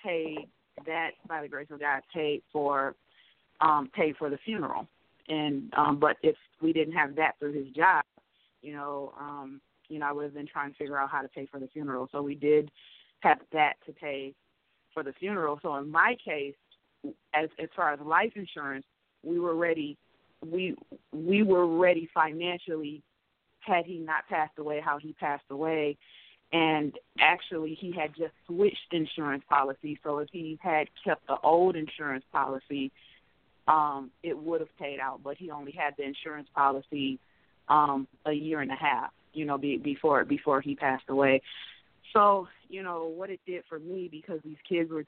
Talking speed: 180 wpm